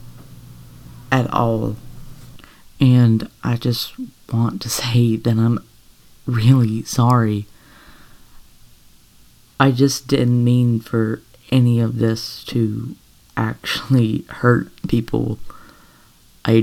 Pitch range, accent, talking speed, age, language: 110-120 Hz, American, 90 wpm, 20-39, English